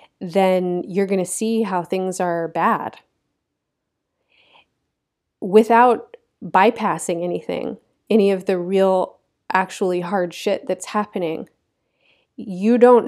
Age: 30-49